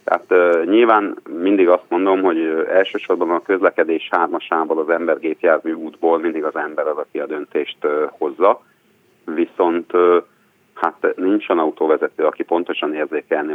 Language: Hungarian